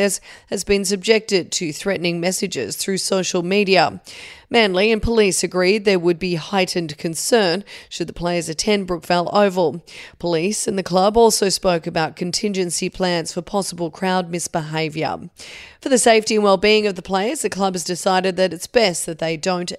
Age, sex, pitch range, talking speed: 30-49, female, 175-210 Hz, 165 wpm